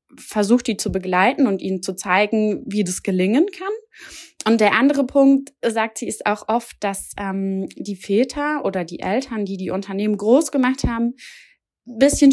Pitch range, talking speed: 195-250 Hz, 170 wpm